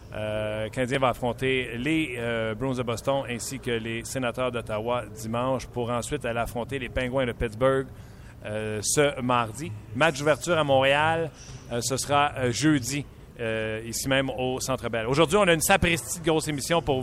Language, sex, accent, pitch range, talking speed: French, male, Canadian, 120-150 Hz, 175 wpm